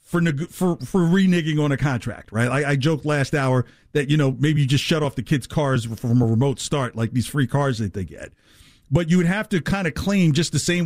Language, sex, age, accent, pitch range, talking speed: English, male, 50-69, American, 135-180 Hz, 255 wpm